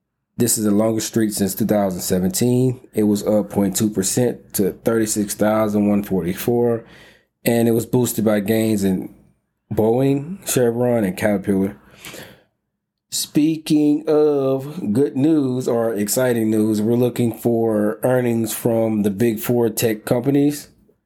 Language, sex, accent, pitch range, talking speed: English, male, American, 100-120 Hz, 115 wpm